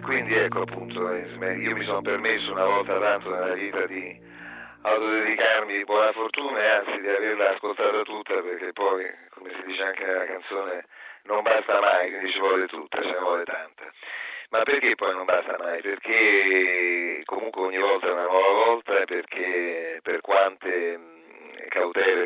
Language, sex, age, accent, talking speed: Italian, male, 40-59, native, 165 wpm